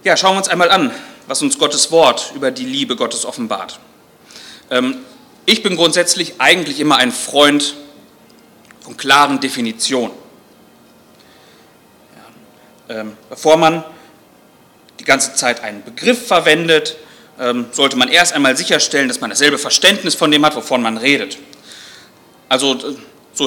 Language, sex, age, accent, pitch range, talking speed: German, male, 30-49, German, 135-190 Hz, 130 wpm